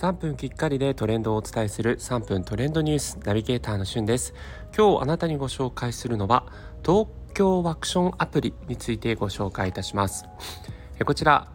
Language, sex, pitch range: Japanese, male, 100-150 Hz